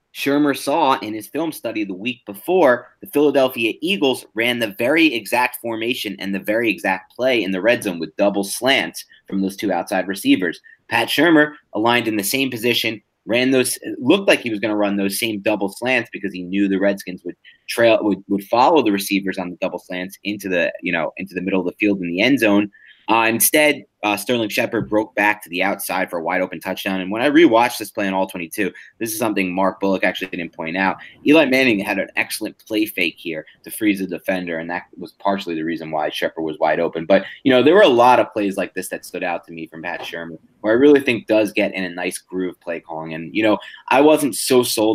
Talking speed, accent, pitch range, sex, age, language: 240 wpm, American, 95-120 Hz, male, 30-49, English